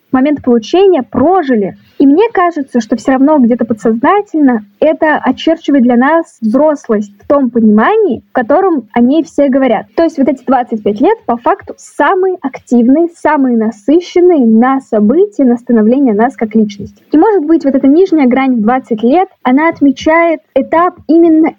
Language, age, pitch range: Russian, 10-29, 240-330 Hz